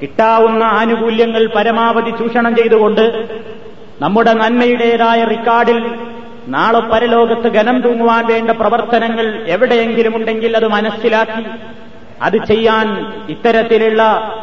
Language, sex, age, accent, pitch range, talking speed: Malayalam, male, 30-49, native, 220-235 Hz, 85 wpm